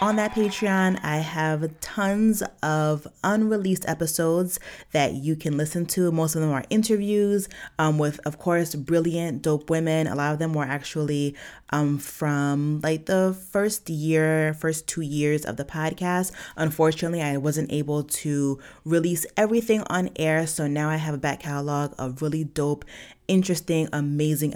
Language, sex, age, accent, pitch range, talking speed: English, female, 20-39, American, 145-170 Hz, 160 wpm